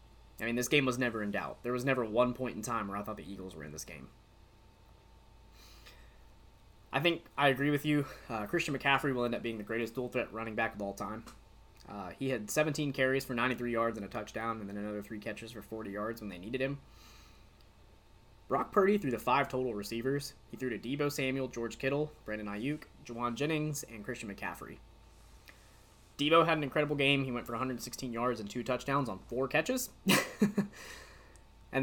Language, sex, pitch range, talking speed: English, male, 105-140 Hz, 200 wpm